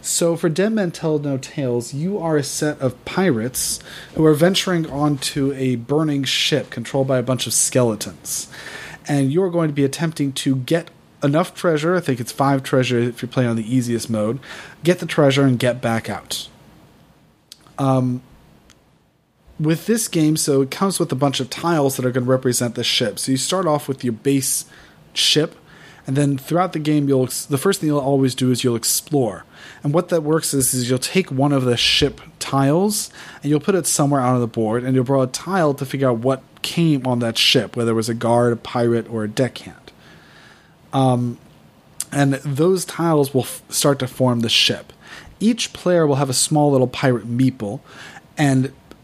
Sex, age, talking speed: male, 30-49, 200 wpm